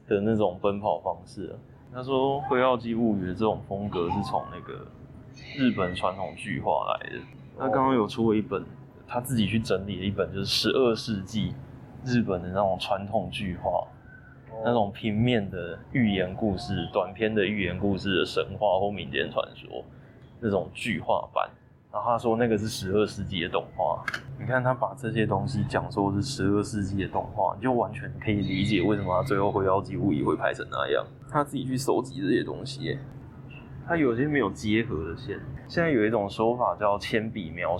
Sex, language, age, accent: male, Chinese, 20-39, native